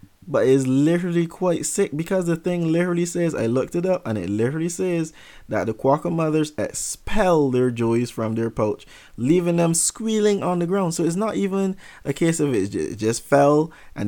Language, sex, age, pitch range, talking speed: English, male, 20-39, 115-175 Hz, 195 wpm